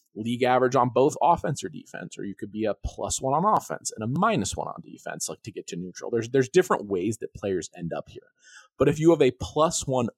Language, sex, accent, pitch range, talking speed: English, male, American, 105-150 Hz, 255 wpm